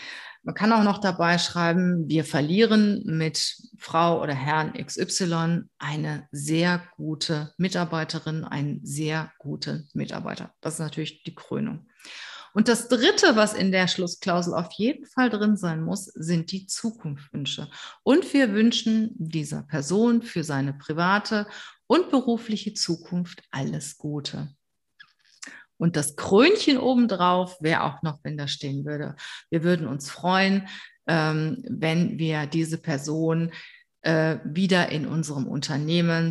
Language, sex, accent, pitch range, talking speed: German, female, German, 155-190 Hz, 130 wpm